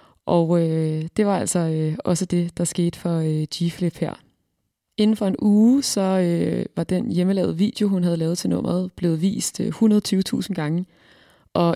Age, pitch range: 20-39, 165-190 Hz